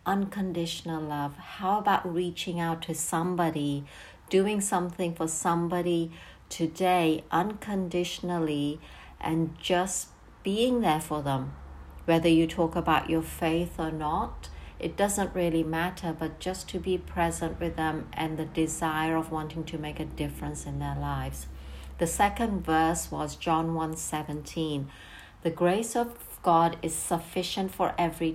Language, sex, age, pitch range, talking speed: English, female, 60-79, 155-180 Hz, 140 wpm